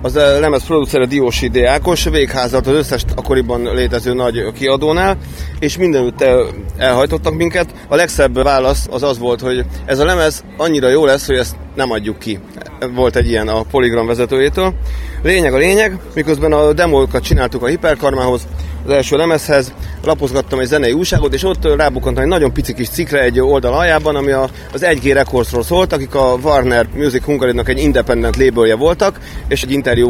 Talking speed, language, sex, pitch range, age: 165 wpm, Hungarian, male, 120-150 Hz, 30-49